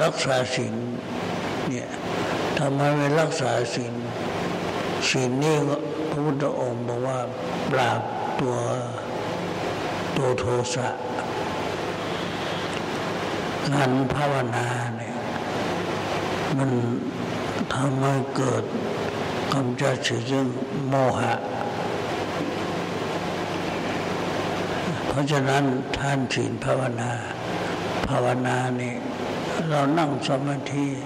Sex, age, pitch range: male, 60-79, 125-135 Hz